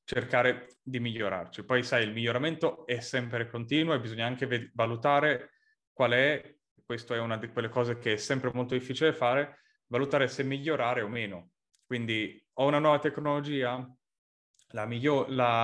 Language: Italian